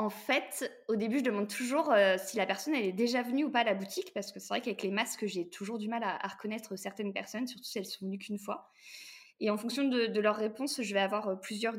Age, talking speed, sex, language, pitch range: 20-39, 280 wpm, female, French, 195-235 Hz